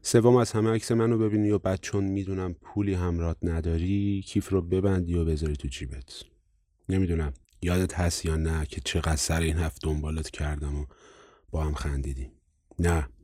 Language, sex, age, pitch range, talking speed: Persian, male, 30-49, 75-95 Hz, 165 wpm